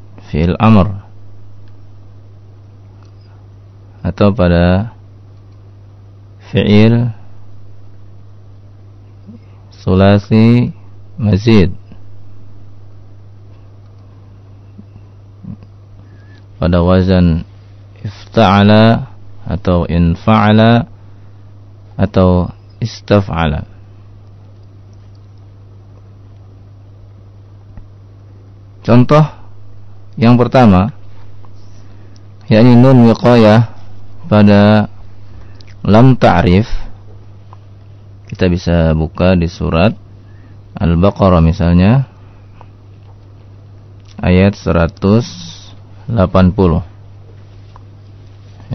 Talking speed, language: 40 wpm, Swahili